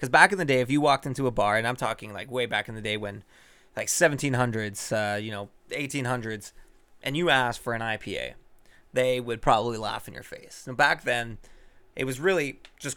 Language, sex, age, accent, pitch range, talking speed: English, male, 20-39, American, 115-140 Hz, 215 wpm